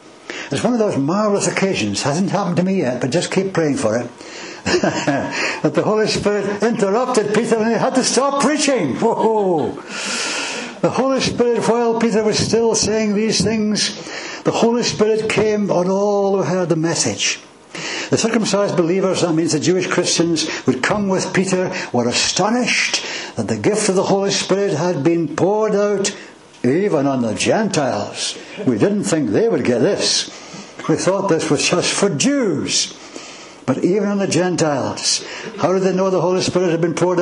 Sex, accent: male, British